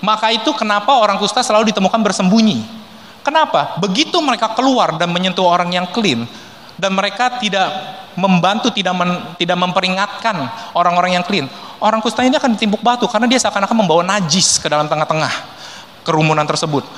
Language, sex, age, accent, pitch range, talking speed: Indonesian, male, 20-39, native, 170-220 Hz, 155 wpm